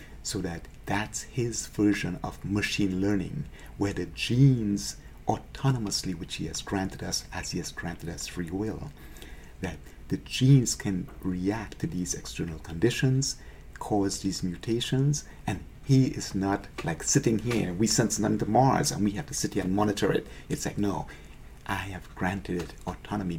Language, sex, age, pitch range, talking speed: English, male, 50-69, 80-110 Hz, 165 wpm